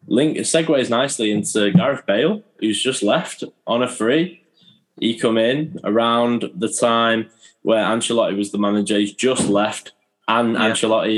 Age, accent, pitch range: 10-29, British, 95-125 Hz